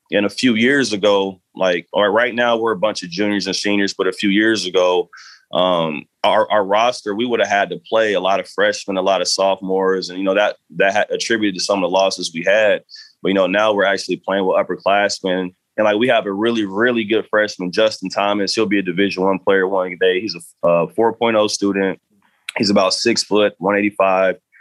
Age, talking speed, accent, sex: 20-39, 220 wpm, American, male